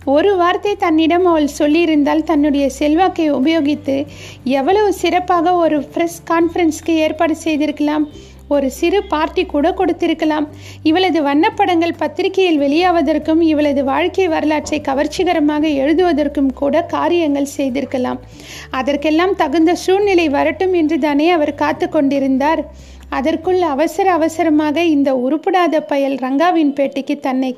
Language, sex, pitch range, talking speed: Tamil, female, 280-340 Hz, 110 wpm